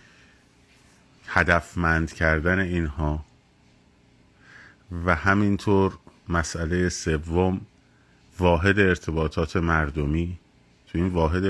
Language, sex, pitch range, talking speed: Persian, male, 80-95 Hz, 70 wpm